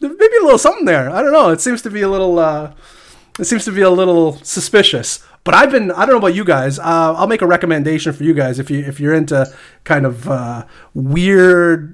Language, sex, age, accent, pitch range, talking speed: English, male, 30-49, American, 135-170 Hz, 240 wpm